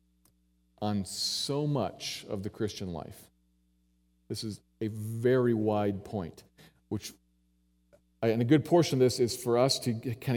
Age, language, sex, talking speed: 40-59, English, male, 145 wpm